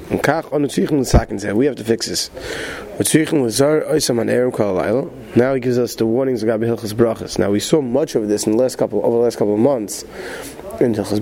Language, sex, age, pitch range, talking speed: English, male, 30-49, 110-135 Hz, 145 wpm